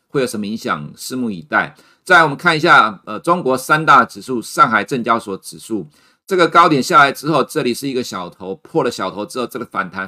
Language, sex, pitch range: Chinese, male, 105-140 Hz